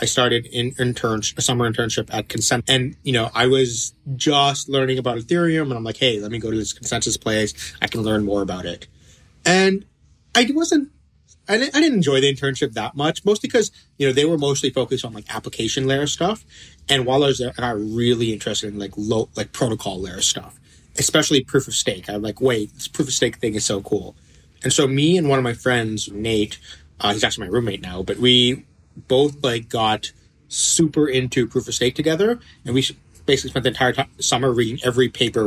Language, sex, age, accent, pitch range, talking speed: English, male, 30-49, American, 110-140 Hz, 210 wpm